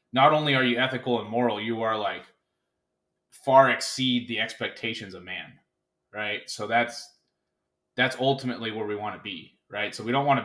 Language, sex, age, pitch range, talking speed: English, male, 20-39, 115-140 Hz, 170 wpm